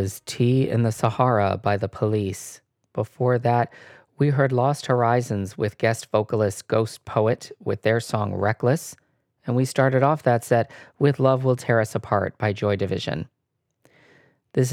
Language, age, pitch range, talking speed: English, 40-59, 110-130 Hz, 155 wpm